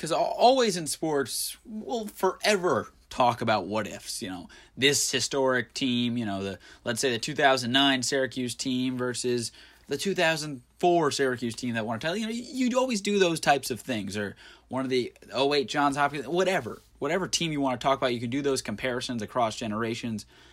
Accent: American